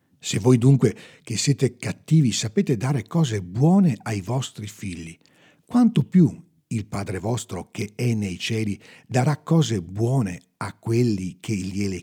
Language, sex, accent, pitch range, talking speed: Italian, male, native, 100-145 Hz, 145 wpm